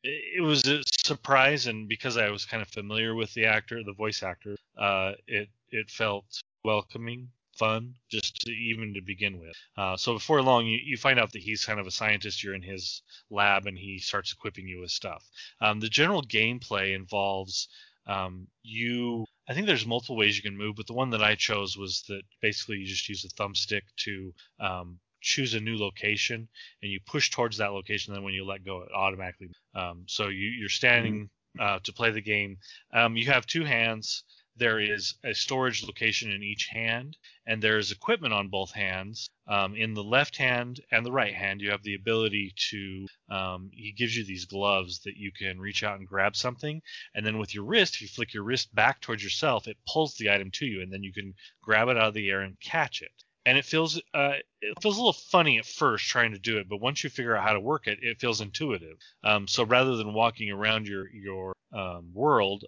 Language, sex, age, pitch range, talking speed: English, male, 20-39, 100-115 Hz, 215 wpm